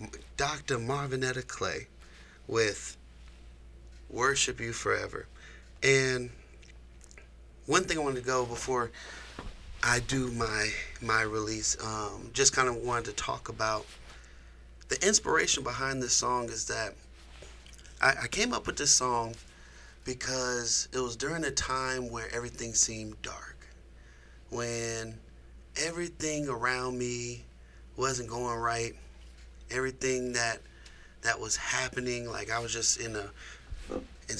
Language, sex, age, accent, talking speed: English, male, 30-49, American, 125 wpm